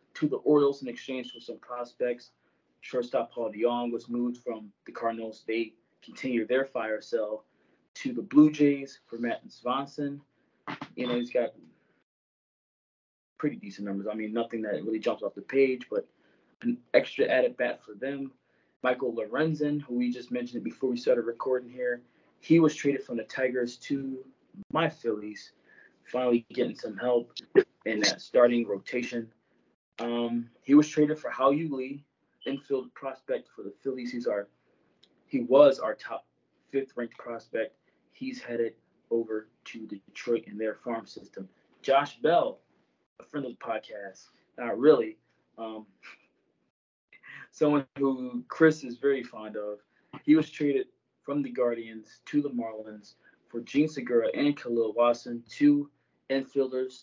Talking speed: 150 wpm